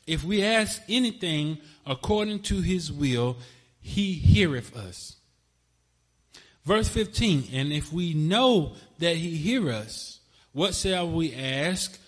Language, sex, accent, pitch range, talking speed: English, male, American, 125-170 Hz, 125 wpm